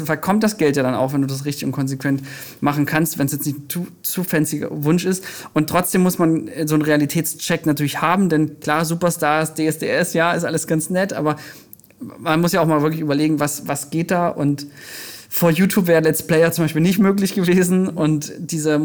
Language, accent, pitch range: German, German, 150-175 Hz